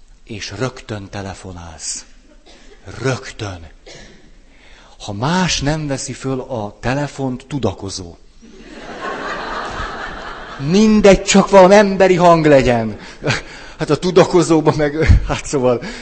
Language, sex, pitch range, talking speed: Hungarian, male, 105-155 Hz, 90 wpm